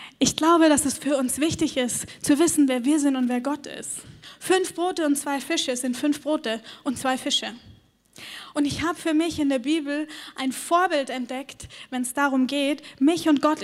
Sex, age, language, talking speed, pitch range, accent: female, 10-29, German, 200 wpm, 255-315 Hz, German